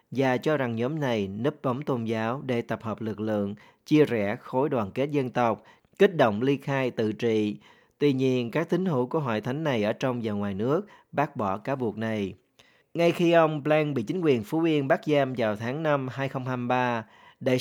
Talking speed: 210 wpm